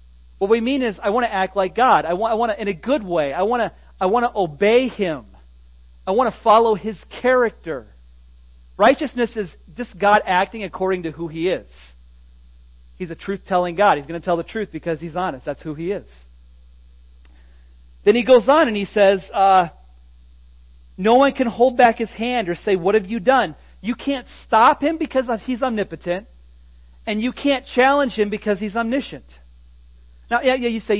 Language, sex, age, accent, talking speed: English, male, 40-59, American, 195 wpm